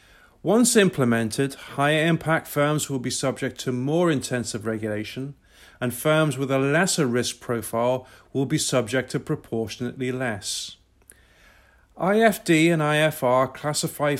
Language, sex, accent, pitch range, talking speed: English, male, British, 120-155 Hz, 125 wpm